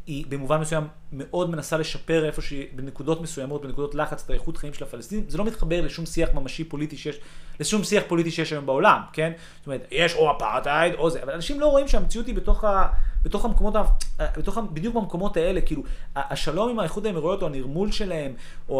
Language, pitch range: Hebrew, 145-200 Hz